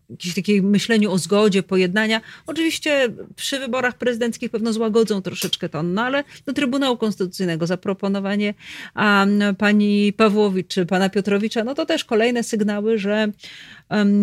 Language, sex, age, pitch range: Polish, female, 30-49, 180-225 Hz